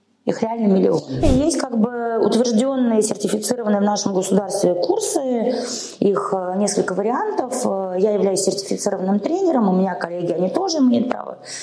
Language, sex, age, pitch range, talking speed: Russian, female, 20-39, 175-230 Hz, 140 wpm